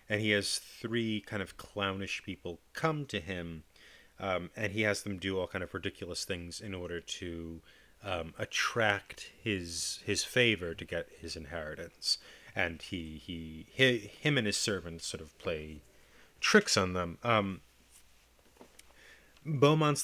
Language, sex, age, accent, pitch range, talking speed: English, male, 30-49, American, 95-125 Hz, 150 wpm